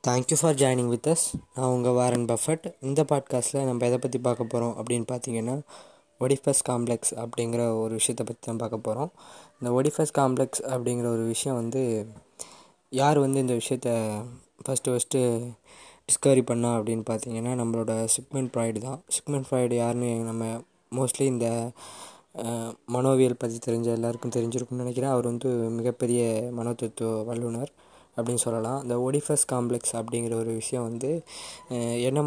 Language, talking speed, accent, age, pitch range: Tamil, 140 wpm, native, 20-39, 115-135 Hz